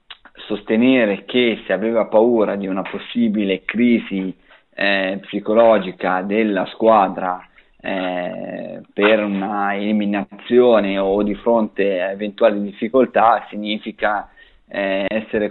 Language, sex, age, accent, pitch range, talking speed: Italian, male, 20-39, native, 95-110 Hz, 100 wpm